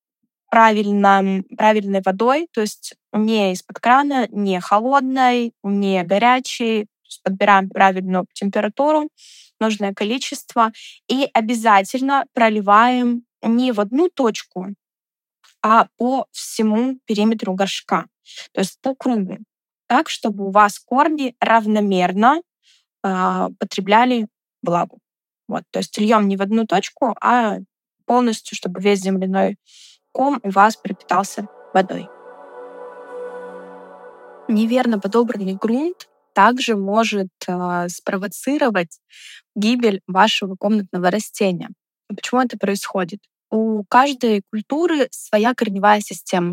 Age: 20-39